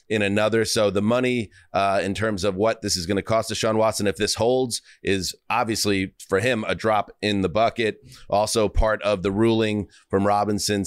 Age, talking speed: 30-49, 205 wpm